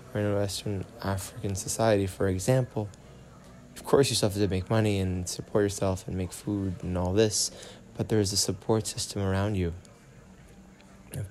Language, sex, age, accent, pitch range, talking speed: English, male, 20-39, American, 95-110 Hz, 175 wpm